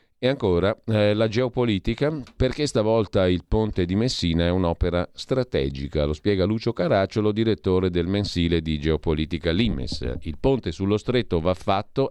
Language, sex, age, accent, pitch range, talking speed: Italian, male, 40-59, native, 85-110 Hz, 150 wpm